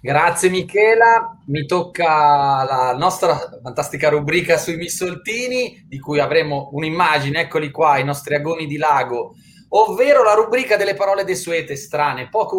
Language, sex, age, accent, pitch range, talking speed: Italian, male, 30-49, native, 130-190 Hz, 140 wpm